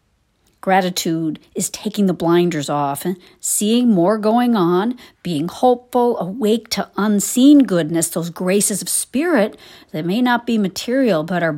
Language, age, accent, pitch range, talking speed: English, 50-69, American, 160-230 Hz, 145 wpm